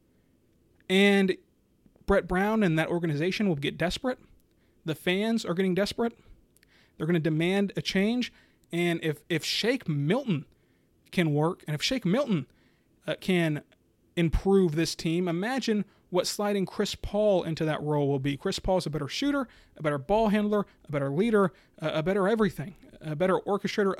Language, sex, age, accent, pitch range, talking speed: English, male, 30-49, American, 155-200 Hz, 165 wpm